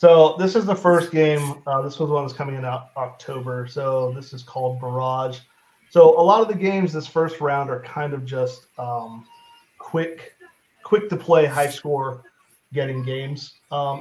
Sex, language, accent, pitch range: male, English, American, 130-165 Hz